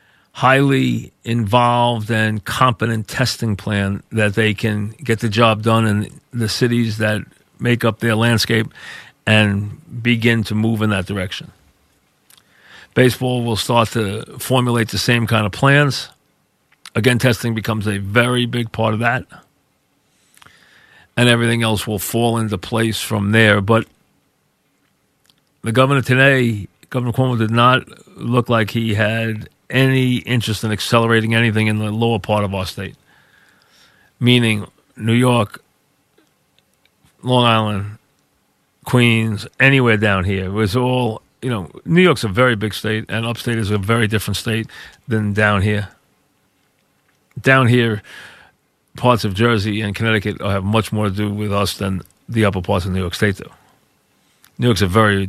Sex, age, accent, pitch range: male, 40-59, American, 105-120 Hz